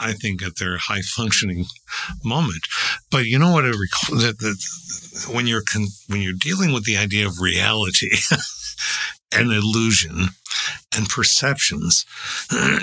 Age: 60-79